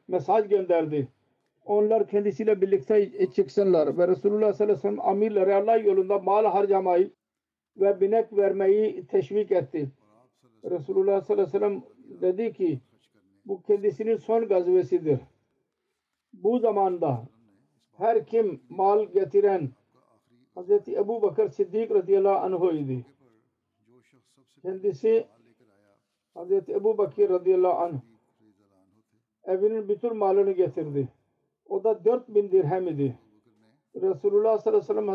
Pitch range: 155-225 Hz